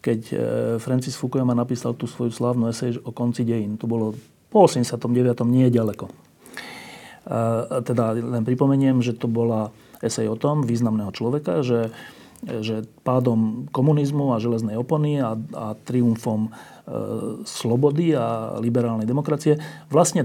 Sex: male